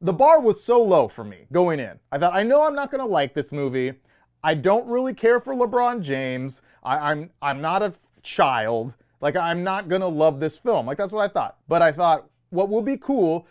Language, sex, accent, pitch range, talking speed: English, male, American, 150-210 Hz, 230 wpm